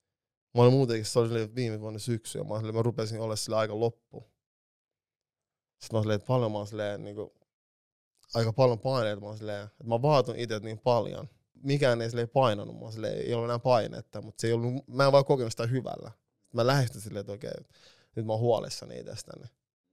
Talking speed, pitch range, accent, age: 185 wpm, 105-120 Hz, native, 20-39